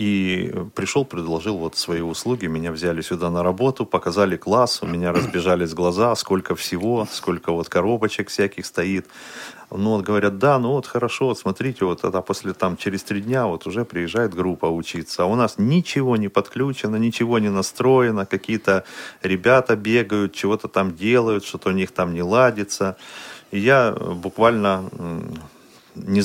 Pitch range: 90-110 Hz